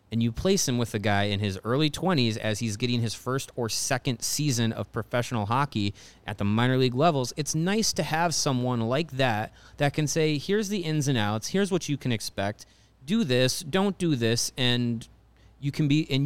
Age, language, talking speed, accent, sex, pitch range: 30-49, English, 200 wpm, American, male, 110-145 Hz